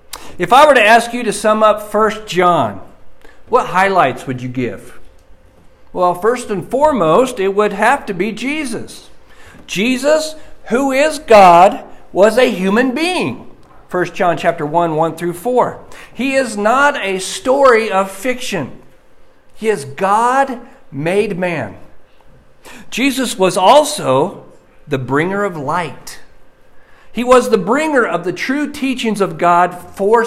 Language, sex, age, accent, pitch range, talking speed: English, male, 50-69, American, 170-245 Hz, 140 wpm